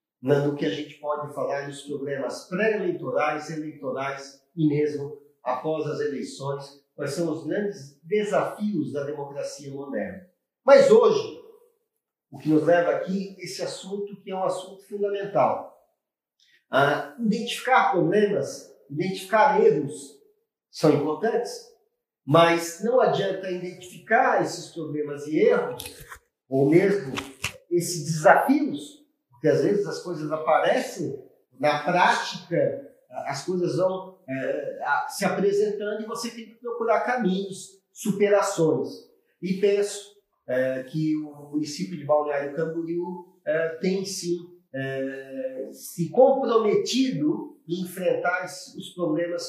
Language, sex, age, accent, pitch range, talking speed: Portuguese, male, 50-69, Brazilian, 155-215 Hz, 120 wpm